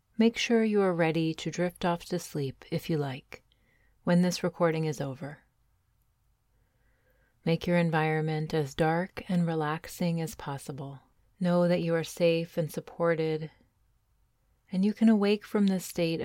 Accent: American